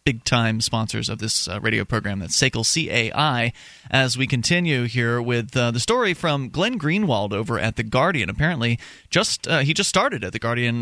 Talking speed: 190 wpm